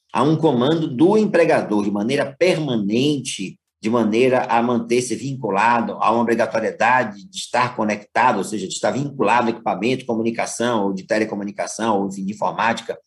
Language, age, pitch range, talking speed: Portuguese, 50-69, 115-155 Hz, 155 wpm